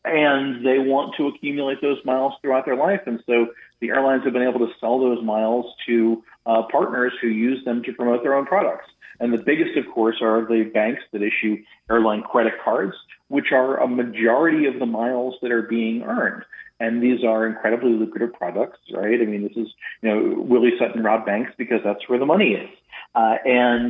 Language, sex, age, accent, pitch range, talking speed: English, male, 40-59, American, 115-140 Hz, 205 wpm